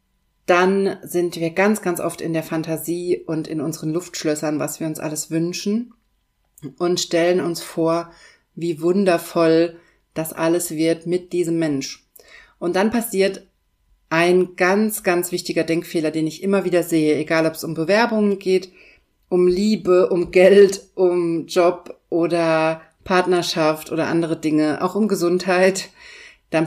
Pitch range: 160-185 Hz